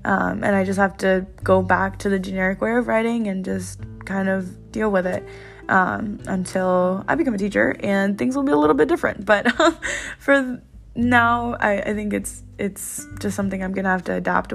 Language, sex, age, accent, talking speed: English, female, 10-29, American, 215 wpm